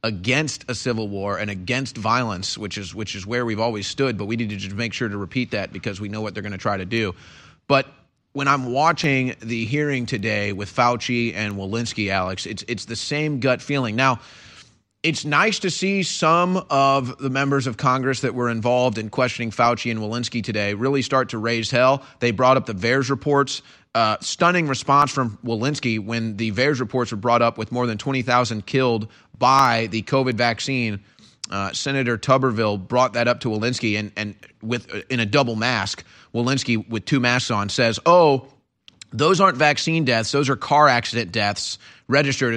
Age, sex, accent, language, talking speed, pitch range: 30-49, male, American, English, 195 wpm, 110-140 Hz